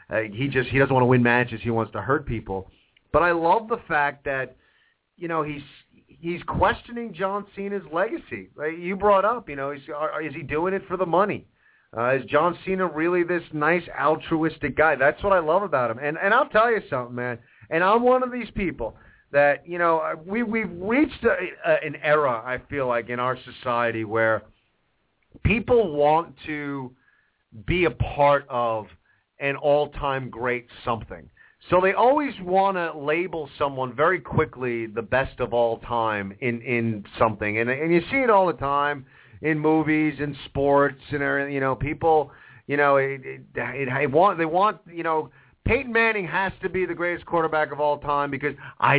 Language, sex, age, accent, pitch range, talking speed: English, male, 40-59, American, 125-175 Hz, 190 wpm